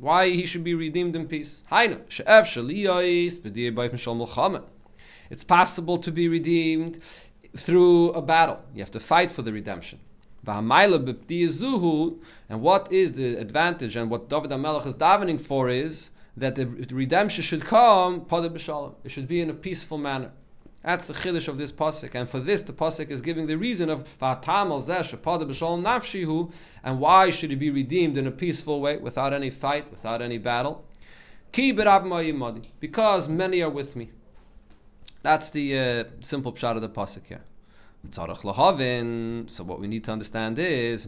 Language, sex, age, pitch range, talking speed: English, male, 40-59, 120-170 Hz, 150 wpm